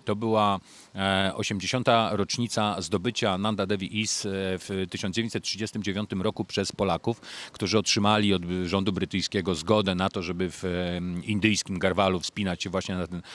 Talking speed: 135 wpm